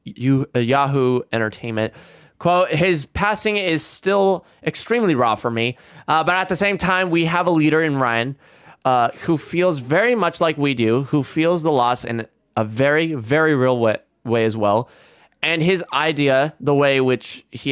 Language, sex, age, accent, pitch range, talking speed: English, male, 20-39, American, 120-160 Hz, 180 wpm